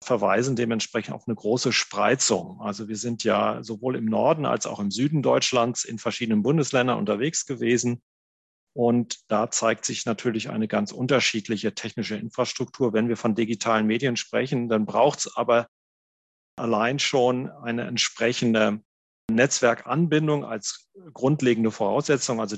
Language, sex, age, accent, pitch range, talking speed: German, male, 40-59, German, 110-135 Hz, 140 wpm